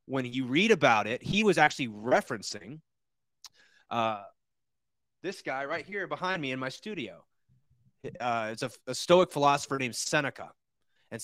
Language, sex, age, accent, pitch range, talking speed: English, male, 30-49, American, 120-155 Hz, 150 wpm